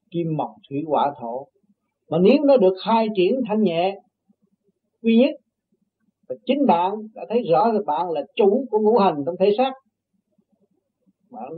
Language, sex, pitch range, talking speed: Vietnamese, male, 175-225 Hz, 165 wpm